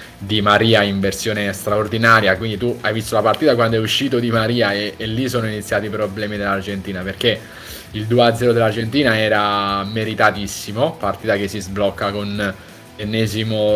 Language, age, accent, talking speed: Italian, 20-39, native, 160 wpm